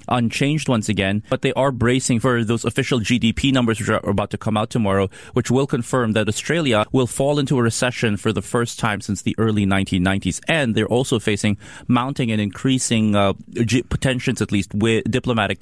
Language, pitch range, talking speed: English, 105-125 Hz, 190 wpm